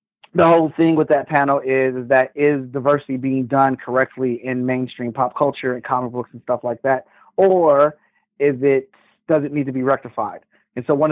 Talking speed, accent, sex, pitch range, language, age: 200 wpm, American, male, 135-170 Hz, English, 30-49